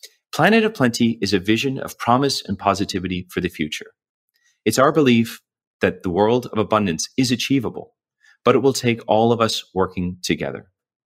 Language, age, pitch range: English, 30-49, 95-130 Hz